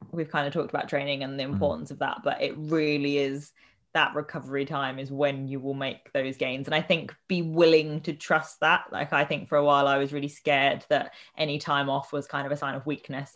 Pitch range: 140-155 Hz